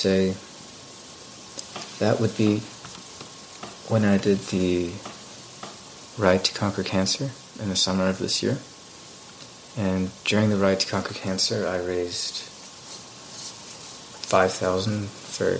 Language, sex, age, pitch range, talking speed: English, male, 30-49, 95-110 Hz, 110 wpm